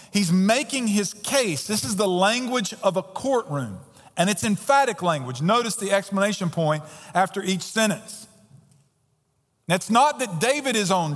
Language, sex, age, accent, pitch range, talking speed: English, male, 40-59, American, 170-230 Hz, 150 wpm